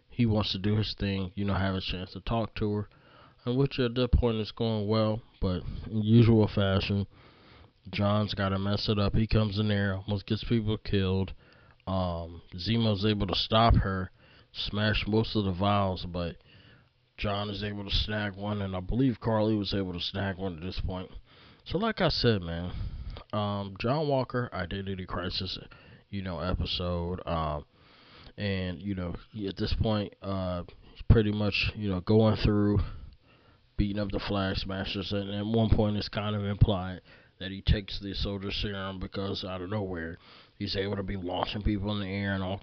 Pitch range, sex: 95-110 Hz, male